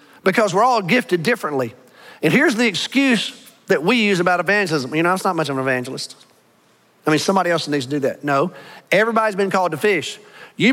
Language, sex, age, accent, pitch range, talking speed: English, male, 40-59, American, 180-240 Hz, 205 wpm